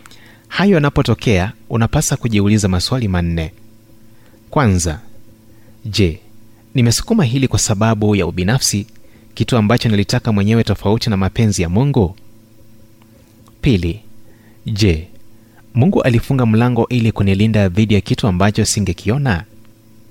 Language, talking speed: Swahili, 105 wpm